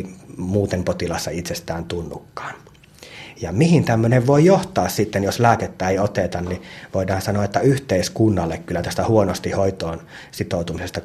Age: 30-49